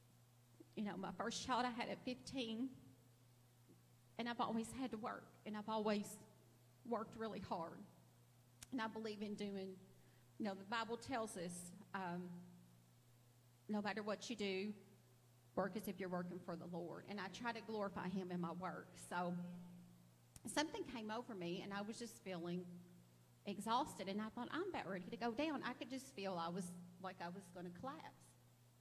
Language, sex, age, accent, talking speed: English, female, 40-59, American, 180 wpm